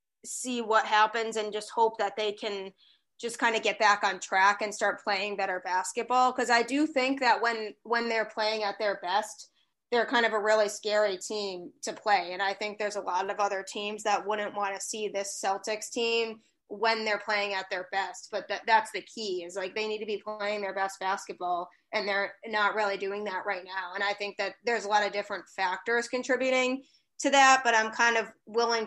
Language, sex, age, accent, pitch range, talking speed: English, female, 20-39, American, 200-225 Hz, 220 wpm